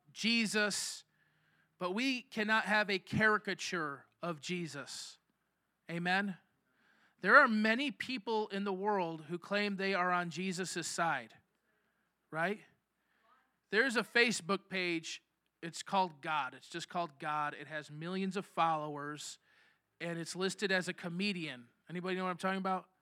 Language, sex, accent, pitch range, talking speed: English, male, American, 175-235 Hz, 140 wpm